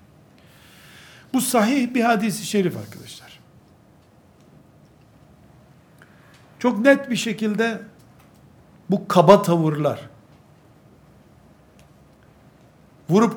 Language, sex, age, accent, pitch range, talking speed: Turkish, male, 60-79, native, 155-210 Hz, 65 wpm